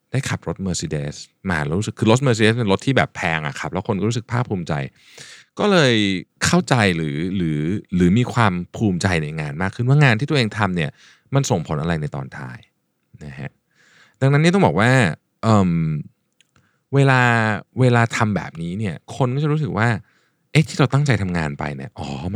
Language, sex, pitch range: Thai, male, 90-130 Hz